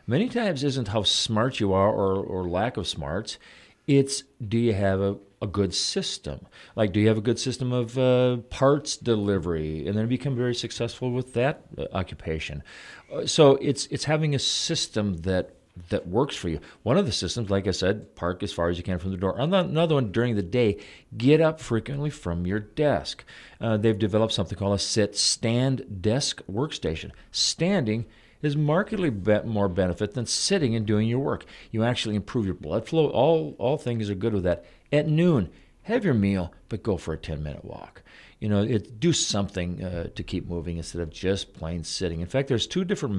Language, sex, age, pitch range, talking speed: English, male, 40-59, 95-135 Hz, 200 wpm